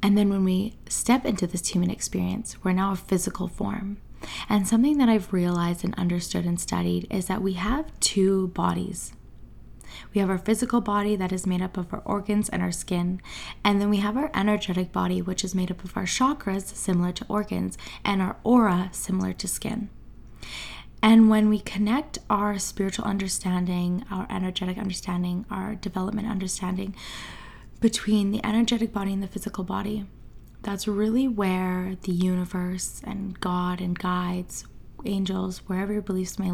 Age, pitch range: 20-39, 180-210 Hz